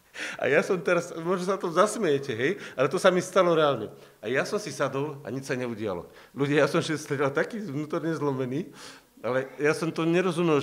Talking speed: 220 wpm